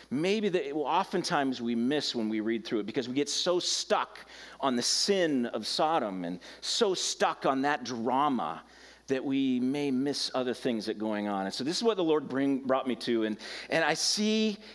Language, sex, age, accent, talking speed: English, male, 40-59, American, 210 wpm